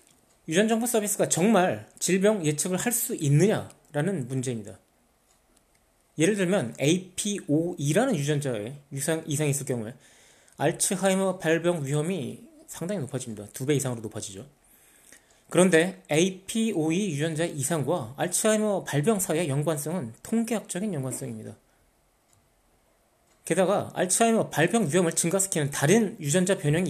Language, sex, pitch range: Korean, male, 135-185 Hz